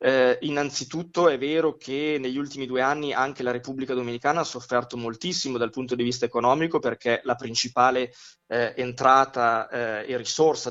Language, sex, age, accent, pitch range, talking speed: Italian, male, 20-39, native, 115-135 Hz, 160 wpm